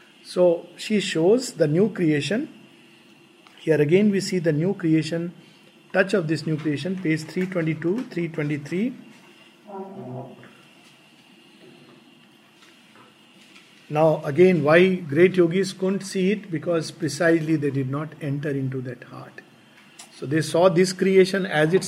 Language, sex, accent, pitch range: English, male, Indian, 150-190 Hz